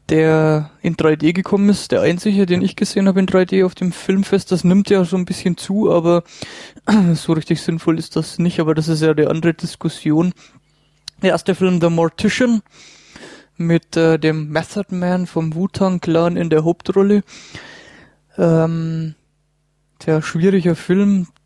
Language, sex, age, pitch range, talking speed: English, male, 20-39, 160-185 Hz, 160 wpm